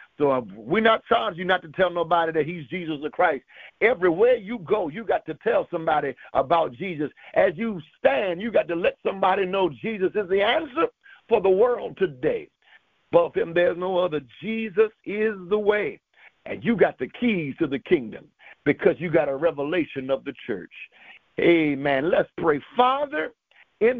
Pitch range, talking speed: 160-240 Hz, 180 wpm